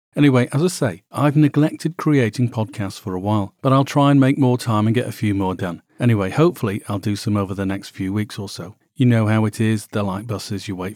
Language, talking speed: English, 250 wpm